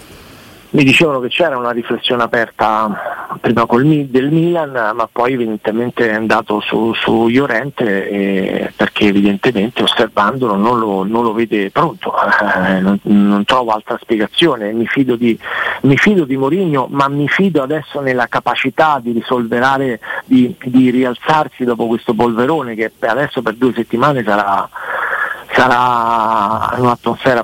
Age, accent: 50-69, native